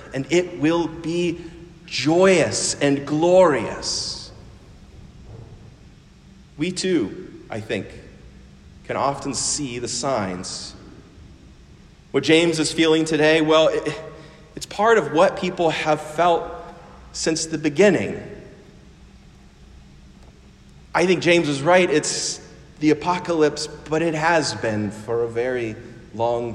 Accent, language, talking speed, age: American, English, 110 wpm, 40-59